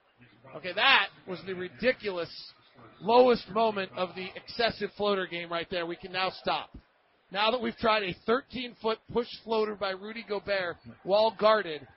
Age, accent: 40-59, American